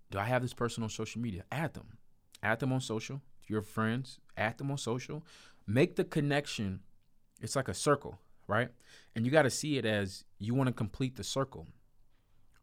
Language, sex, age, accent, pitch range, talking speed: English, male, 20-39, American, 105-130 Hz, 195 wpm